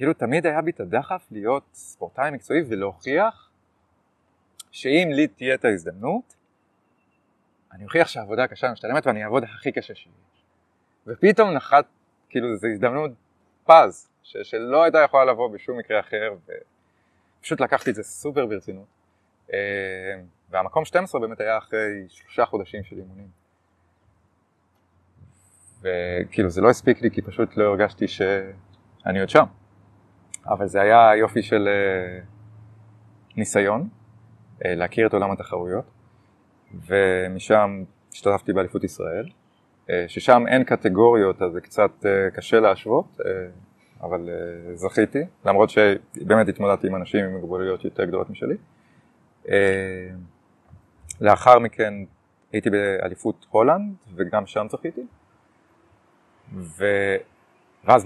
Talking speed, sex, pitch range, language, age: 110 wpm, male, 95-115 Hz, Hebrew, 30-49